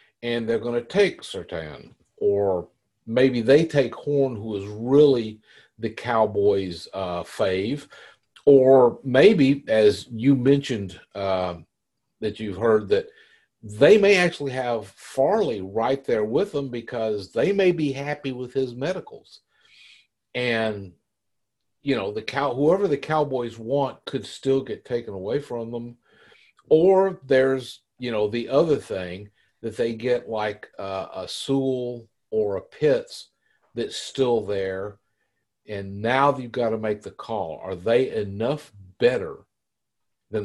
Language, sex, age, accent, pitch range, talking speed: English, male, 50-69, American, 105-150 Hz, 140 wpm